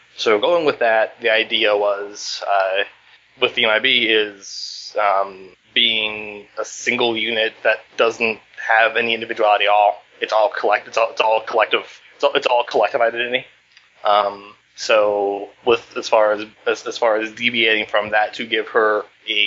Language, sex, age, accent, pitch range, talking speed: English, male, 20-39, American, 105-120 Hz, 175 wpm